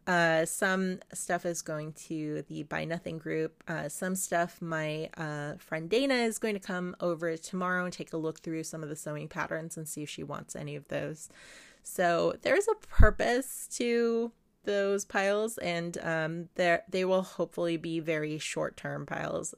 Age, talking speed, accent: 20-39, 180 wpm, American